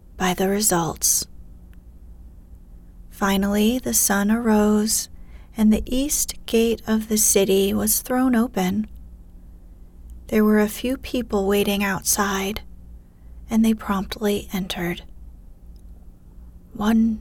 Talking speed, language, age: 100 wpm, English, 30-49